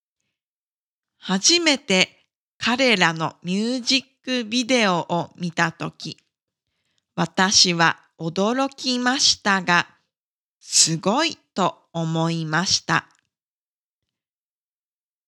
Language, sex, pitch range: Japanese, female, 165-235 Hz